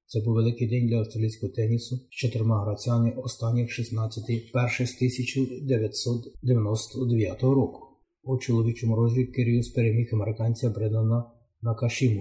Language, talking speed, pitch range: Ukrainian, 120 wpm, 110-120 Hz